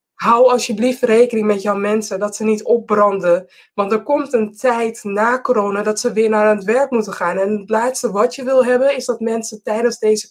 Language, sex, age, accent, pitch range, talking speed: English, female, 20-39, Dutch, 210-250 Hz, 215 wpm